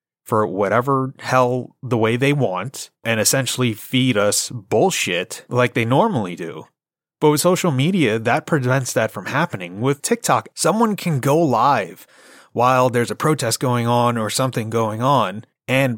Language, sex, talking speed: English, male, 160 wpm